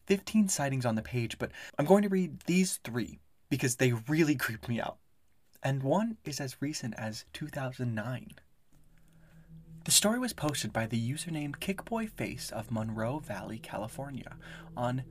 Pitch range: 120-165 Hz